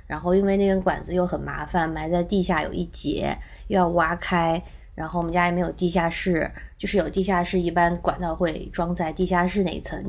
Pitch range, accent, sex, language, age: 170-205 Hz, native, female, Chinese, 20-39